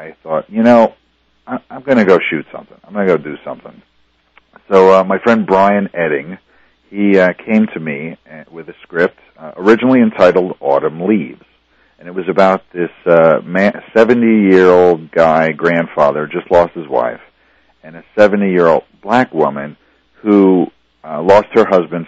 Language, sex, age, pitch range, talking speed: English, male, 50-69, 80-105 Hz, 170 wpm